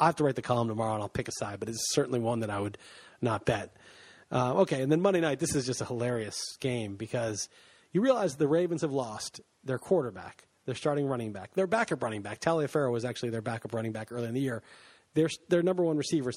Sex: male